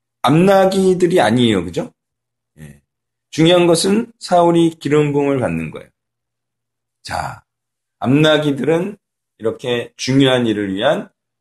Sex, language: male, Korean